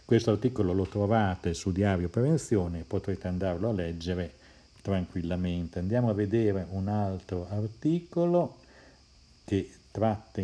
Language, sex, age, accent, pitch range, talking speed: Italian, male, 50-69, native, 85-105 Hz, 115 wpm